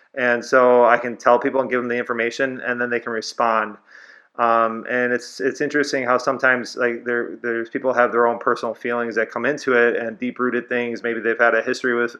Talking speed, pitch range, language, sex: 225 wpm, 115-130 Hz, English, male